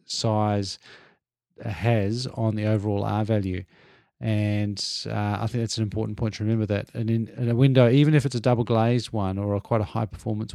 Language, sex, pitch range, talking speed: English, male, 105-125 Hz, 205 wpm